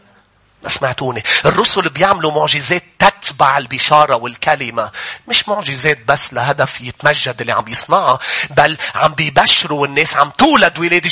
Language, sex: English, male